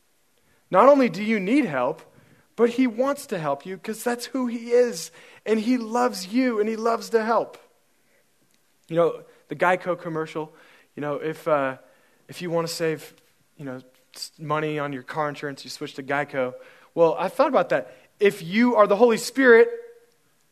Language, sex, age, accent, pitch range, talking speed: English, male, 20-39, American, 150-230 Hz, 180 wpm